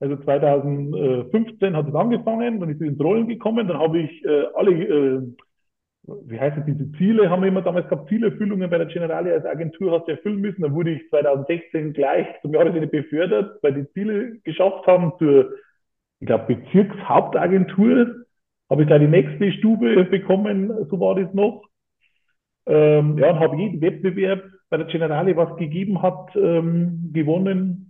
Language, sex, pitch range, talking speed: German, male, 140-190 Hz, 170 wpm